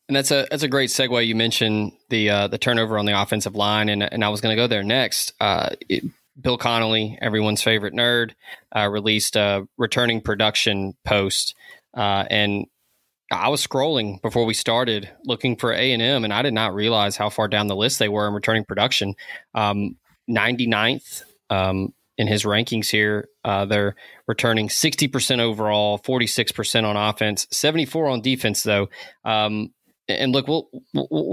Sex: male